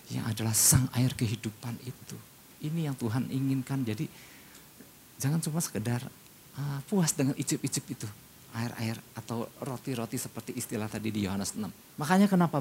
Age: 50-69